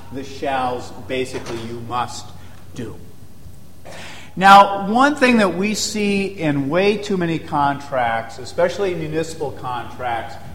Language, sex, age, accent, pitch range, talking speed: English, male, 50-69, American, 125-180 Hz, 120 wpm